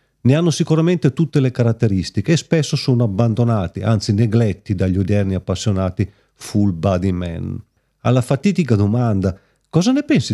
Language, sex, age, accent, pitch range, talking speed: Italian, male, 40-59, native, 100-130 Hz, 140 wpm